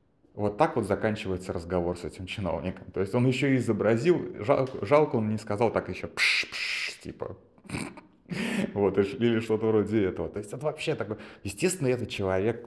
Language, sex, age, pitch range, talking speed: Russian, male, 20-39, 95-115 Hz, 170 wpm